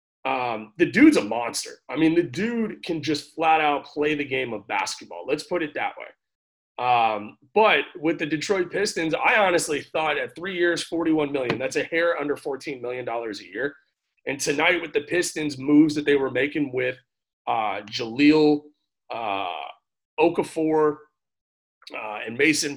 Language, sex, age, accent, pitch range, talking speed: English, male, 30-49, American, 135-170 Hz, 165 wpm